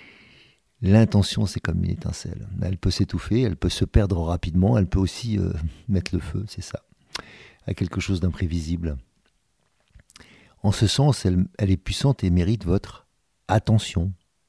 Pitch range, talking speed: 85-105 Hz, 155 wpm